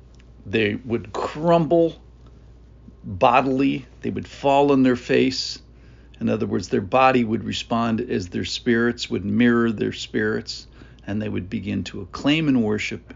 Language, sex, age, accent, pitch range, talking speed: English, male, 50-69, American, 80-130 Hz, 145 wpm